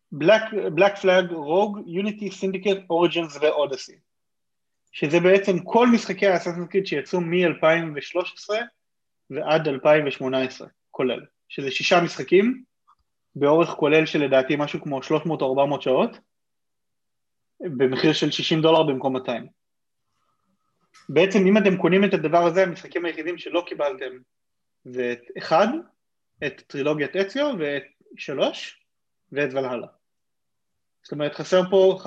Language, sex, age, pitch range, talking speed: Hebrew, male, 30-49, 140-195 Hz, 110 wpm